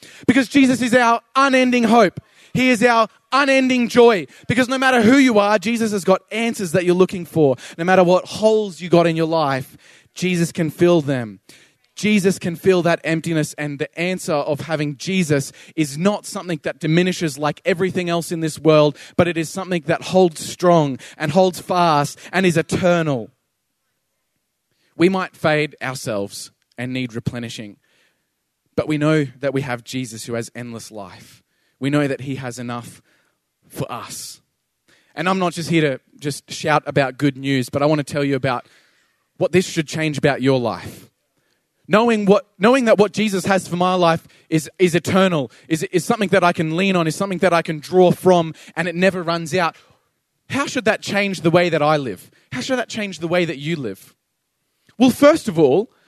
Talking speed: 190 wpm